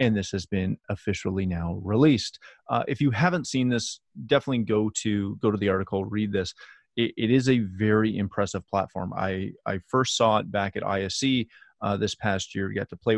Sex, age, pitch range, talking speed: male, 30-49, 100-125 Hz, 205 wpm